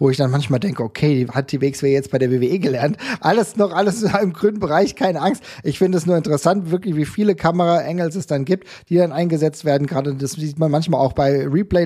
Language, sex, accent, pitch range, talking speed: German, male, German, 135-175 Hz, 240 wpm